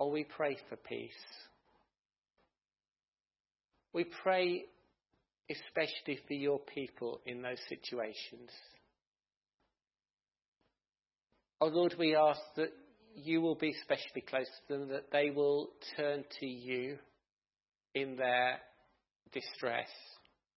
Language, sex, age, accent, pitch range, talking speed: English, male, 50-69, British, 125-145 Hz, 100 wpm